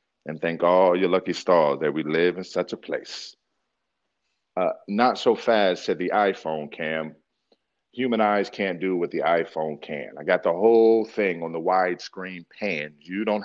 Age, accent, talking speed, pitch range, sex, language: 40-59, American, 180 wpm, 90-110 Hz, male, English